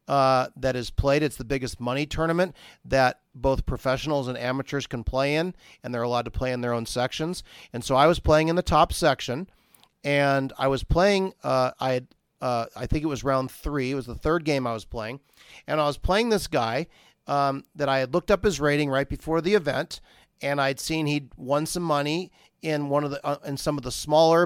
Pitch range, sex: 130-160 Hz, male